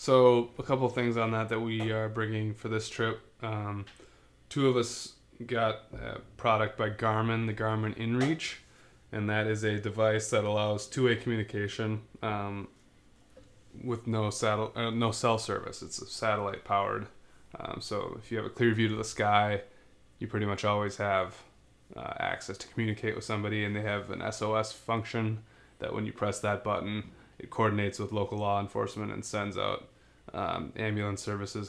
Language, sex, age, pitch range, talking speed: English, male, 20-39, 105-115 Hz, 170 wpm